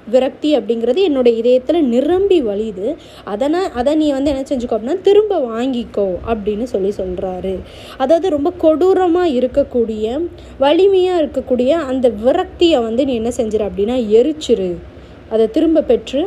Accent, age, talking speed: native, 20-39, 135 wpm